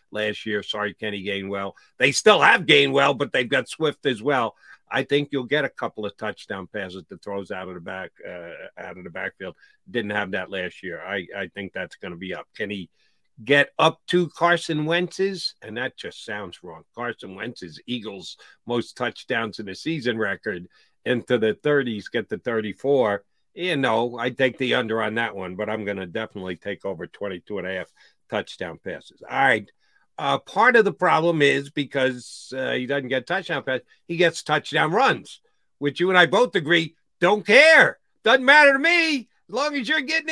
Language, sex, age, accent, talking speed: English, male, 50-69, American, 200 wpm